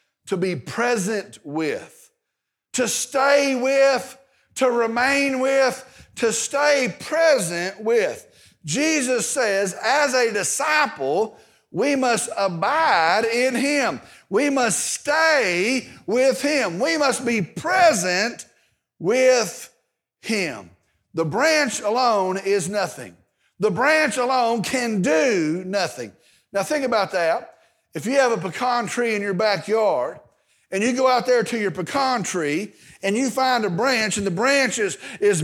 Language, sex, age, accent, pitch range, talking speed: English, male, 50-69, American, 200-270 Hz, 130 wpm